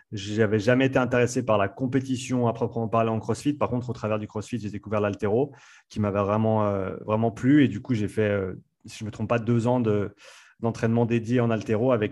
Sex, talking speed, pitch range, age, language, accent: male, 240 wpm, 105-125 Hz, 30-49, French, French